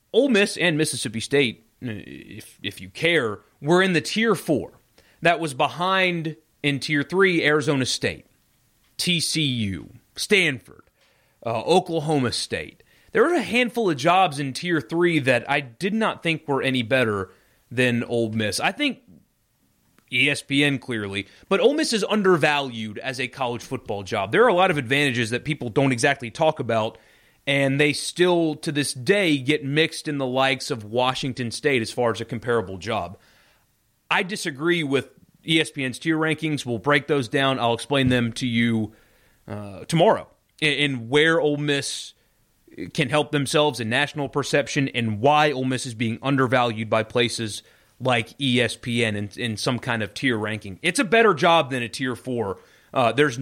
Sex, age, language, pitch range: male, 30-49, English, 115-155 Hz